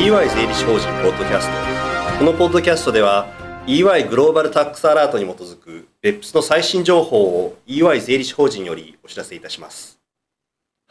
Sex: male